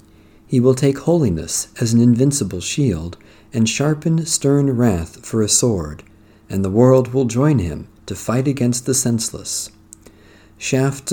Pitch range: 105-125 Hz